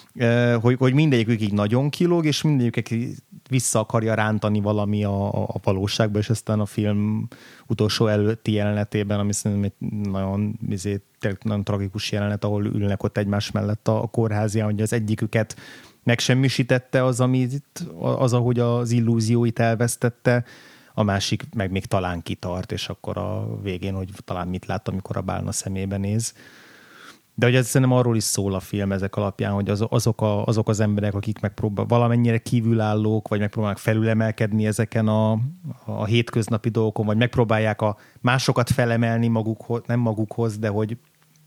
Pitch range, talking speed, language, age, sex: 105-120 Hz, 160 wpm, Hungarian, 30-49, male